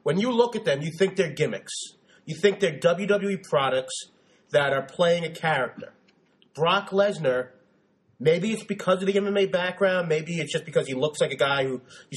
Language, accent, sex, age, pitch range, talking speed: English, American, male, 30-49, 165-200 Hz, 190 wpm